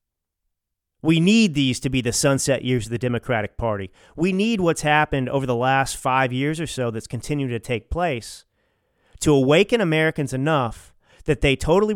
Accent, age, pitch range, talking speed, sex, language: American, 40-59, 120-160 Hz, 175 wpm, male, English